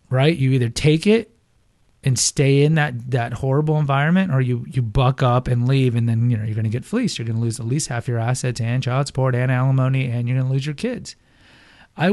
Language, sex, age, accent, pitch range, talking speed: English, male, 30-49, American, 120-150 Hz, 245 wpm